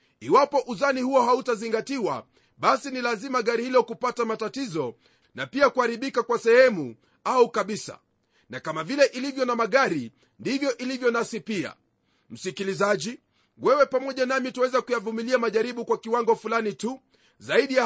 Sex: male